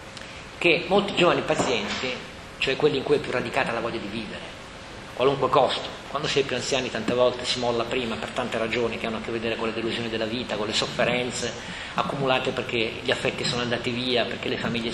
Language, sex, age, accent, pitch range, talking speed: Italian, male, 40-59, native, 115-145 Hz, 215 wpm